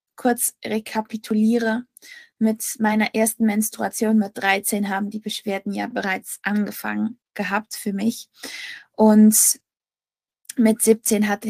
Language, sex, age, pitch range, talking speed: German, female, 20-39, 210-235 Hz, 110 wpm